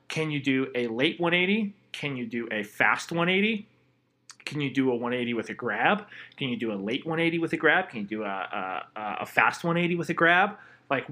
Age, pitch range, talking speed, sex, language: 30-49, 130-165 Hz, 220 wpm, male, English